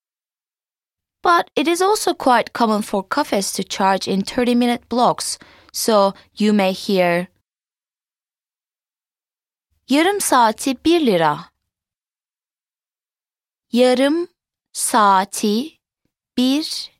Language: English